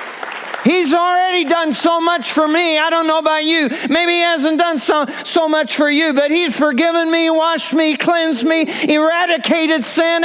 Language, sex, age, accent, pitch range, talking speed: English, male, 50-69, American, 220-315 Hz, 180 wpm